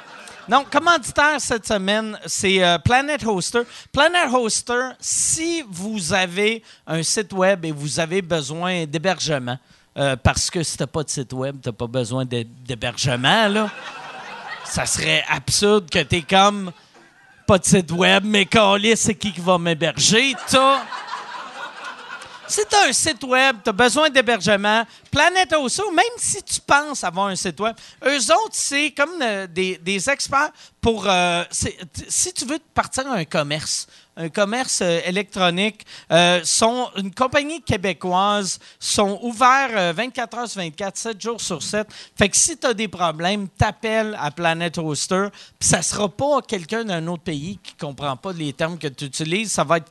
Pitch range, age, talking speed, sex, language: 170-245 Hz, 40-59, 170 wpm, male, French